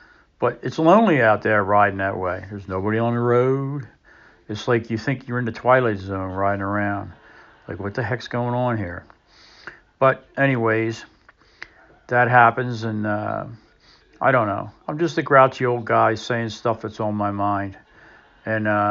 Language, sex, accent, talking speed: English, male, American, 170 wpm